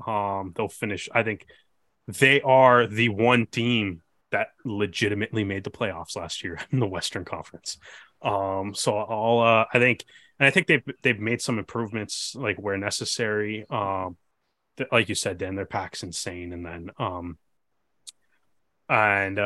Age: 20-39